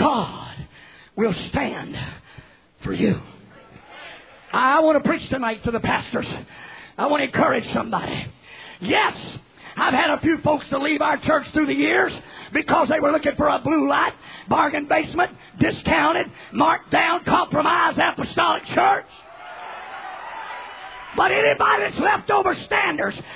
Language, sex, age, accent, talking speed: English, male, 40-59, American, 135 wpm